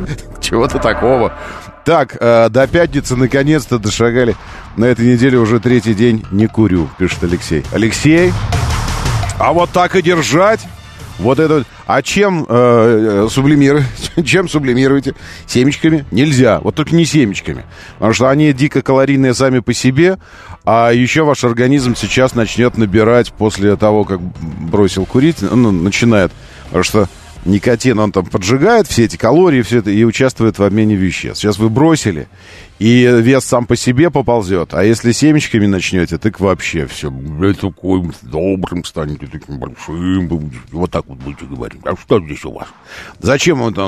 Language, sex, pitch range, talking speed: Russian, male, 95-130 Hz, 150 wpm